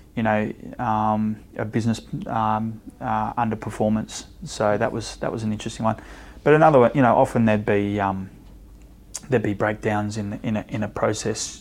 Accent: Australian